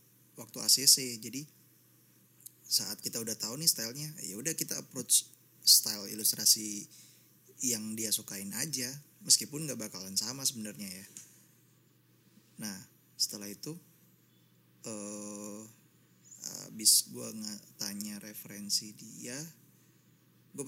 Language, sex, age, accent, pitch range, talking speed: Indonesian, male, 20-39, native, 100-120 Hz, 105 wpm